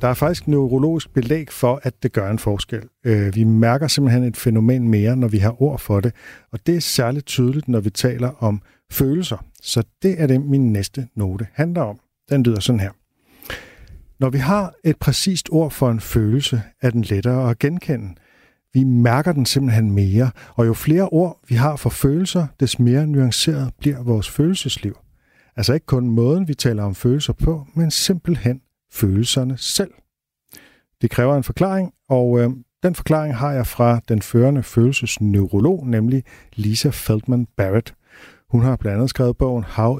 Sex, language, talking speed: male, Danish, 175 wpm